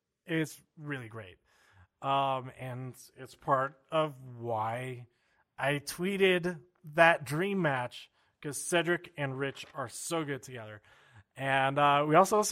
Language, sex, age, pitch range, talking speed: English, male, 30-49, 135-180 Hz, 125 wpm